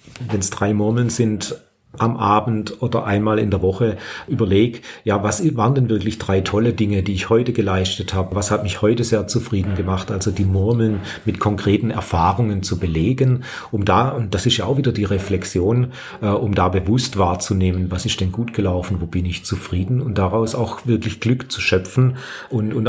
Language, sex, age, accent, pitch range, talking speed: German, male, 40-59, German, 95-115 Hz, 195 wpm